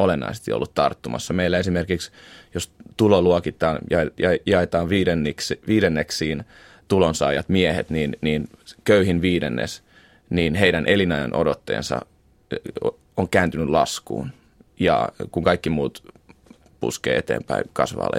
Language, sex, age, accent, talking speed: Finnish, male, 30-49, native, 105 wpm